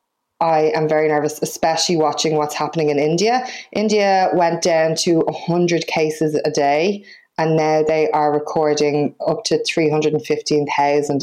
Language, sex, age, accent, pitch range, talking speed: English, female, 20-39, Irish, 145-160 Hz, 140 wpm